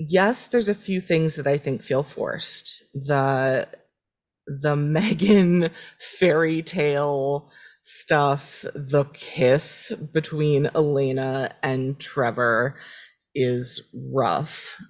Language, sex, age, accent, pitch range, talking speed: English, female, 30-49, American, 135-160 Hz, 95 wpm